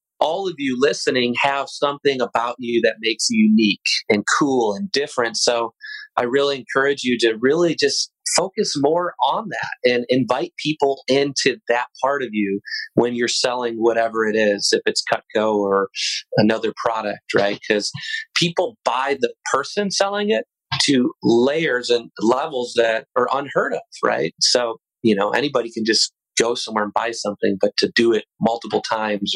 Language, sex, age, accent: English, male, 30-49, American